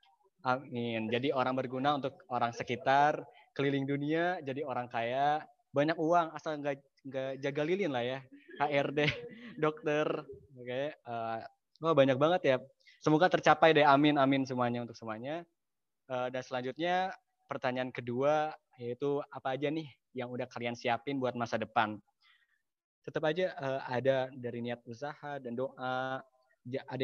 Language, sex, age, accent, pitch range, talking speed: Indonesian, male, 20-39, native, 120-145 Hz, 140 wpm